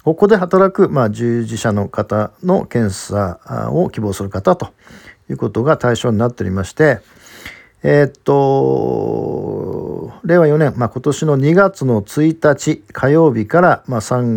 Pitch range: 110-155 Hz